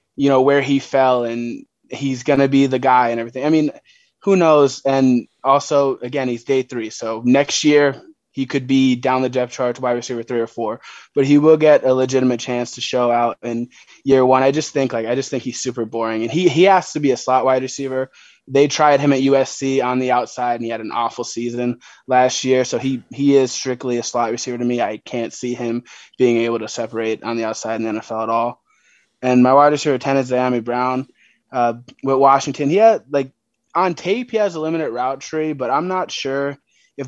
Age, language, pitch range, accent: 20-39, English, 125-140 Hz, American